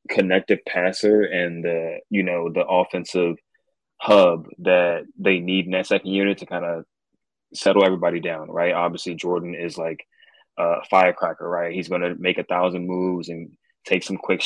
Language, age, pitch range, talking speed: English, 20-39, 90-95 Hz, 160 wpm